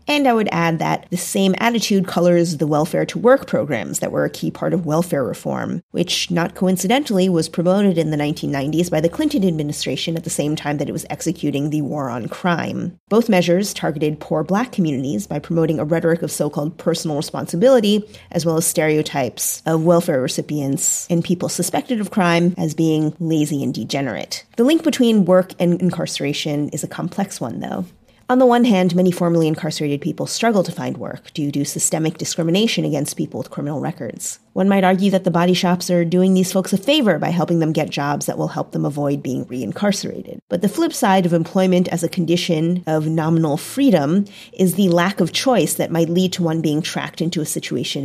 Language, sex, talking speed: English, female, 200 wpm